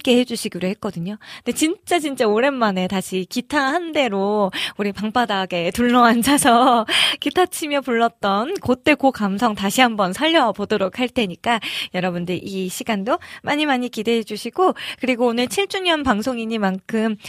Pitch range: 200-280 Hz